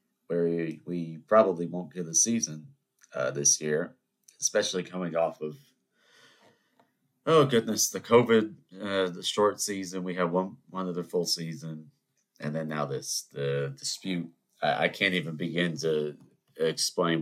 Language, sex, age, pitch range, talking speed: English, male, 30-49, 80-100 Hz, 145 wpm